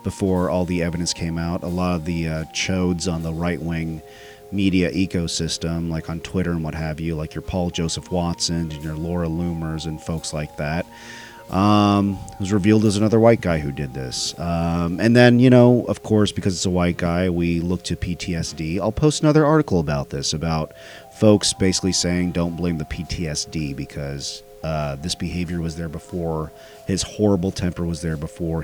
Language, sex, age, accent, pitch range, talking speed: English, male, 30-49, American, 85-105 Hz, 190 wpm